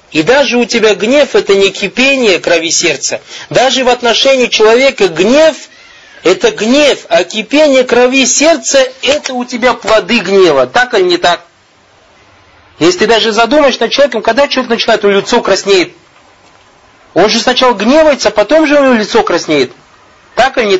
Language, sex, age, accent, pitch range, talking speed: Russian, male, 40-59, native, 175-275 Hz, 170 wpm